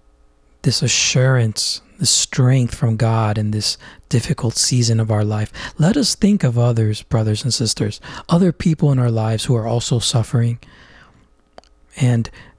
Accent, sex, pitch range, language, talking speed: American, male, 105-130 Hz, English, 150 wpm